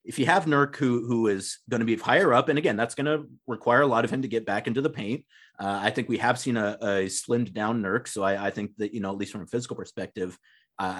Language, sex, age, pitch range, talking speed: English, male, 30-49, 110-140 Hz, 290 wpm